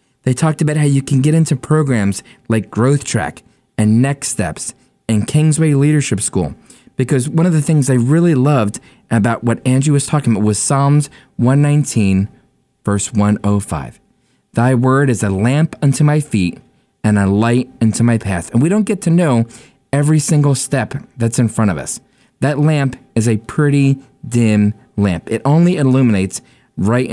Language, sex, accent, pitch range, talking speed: English, male, American, 115-145 Hz, 170 wpm